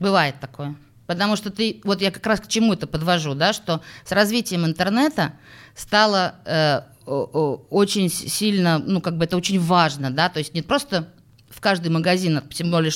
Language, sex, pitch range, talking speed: Russian, female, 135-190 Hz, 175 wpm